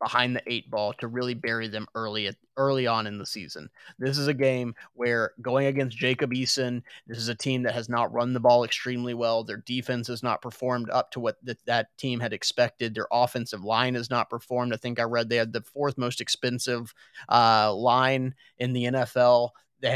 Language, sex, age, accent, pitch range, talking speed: English, male, 30-49, American, 115-130 Hz, 210 wpm